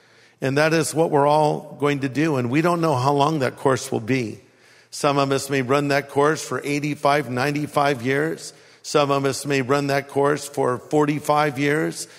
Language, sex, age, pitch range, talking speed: English, male, 50-69, 140-190 Hz, 195 wpm